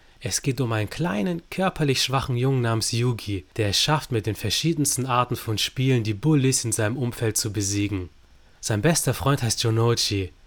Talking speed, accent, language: 180 wpm, German, German